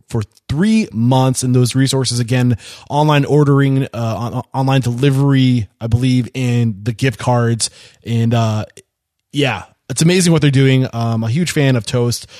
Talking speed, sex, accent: 170 wpm, male, American